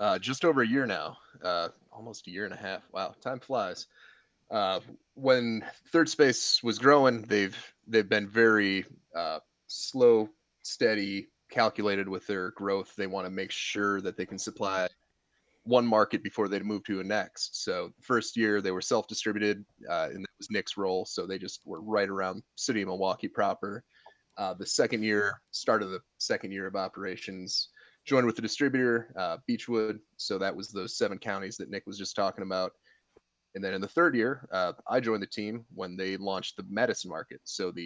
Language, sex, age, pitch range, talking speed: English, male, 20-39, 95-110 Hz, 190 wpm